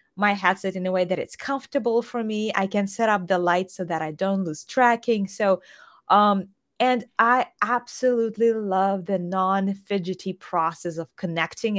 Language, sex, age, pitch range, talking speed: English, female, 20-39, 175-215 Hz, 170 wpm